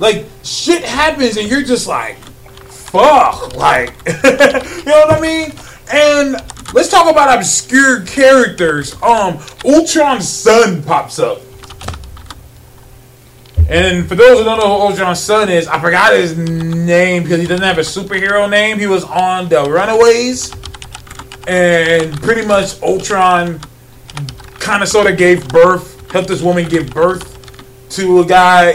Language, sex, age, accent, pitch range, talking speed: English, male, 20-39, American, 145-210 Hz, 145 wpm